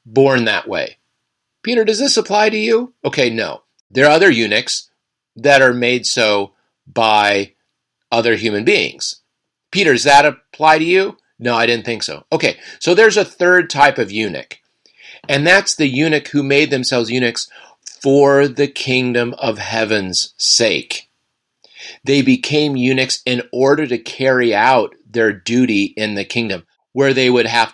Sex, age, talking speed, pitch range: male, 40-59, 160 wpm, 110-140 Hz